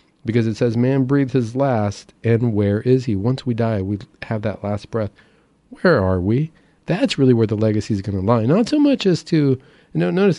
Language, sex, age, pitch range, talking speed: English, male, 40-59, 100-130 Hz, 225 wpm